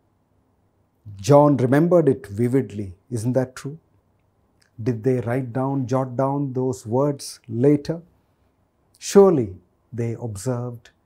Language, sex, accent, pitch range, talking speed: Kannada, male, native, 100-135 Hz, 105 wpm